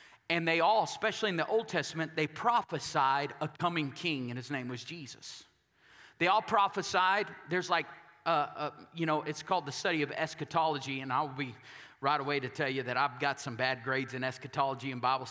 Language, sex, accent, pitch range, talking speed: English, male, American, 140-170 Hz, 200 wpm